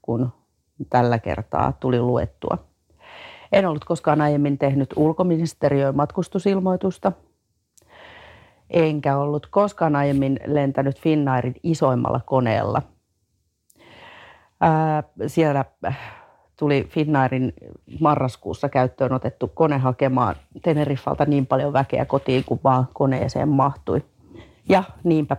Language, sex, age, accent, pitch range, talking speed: Finnish, female, 40-59, native, 130-160 Hz, 95 wpm